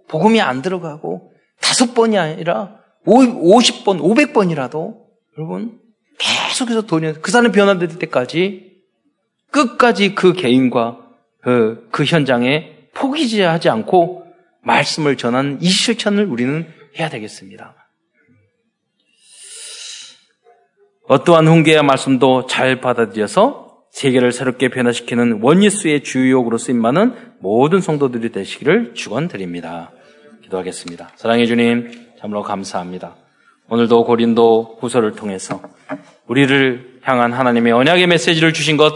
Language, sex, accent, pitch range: Korean, male, native, 120-200 Hz